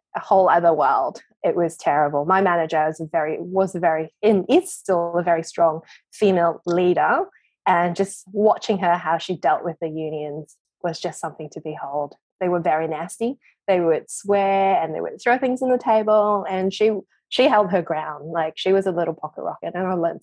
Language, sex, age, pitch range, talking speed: English, female, 20-39, 175-215 Hz, 200 wpm